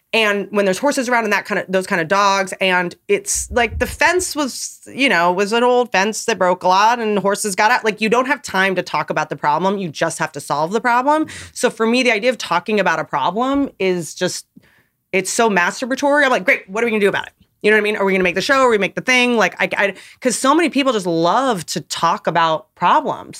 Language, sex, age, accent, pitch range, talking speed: English, female, 30-49, American, 170-230 Hz, 265 wpm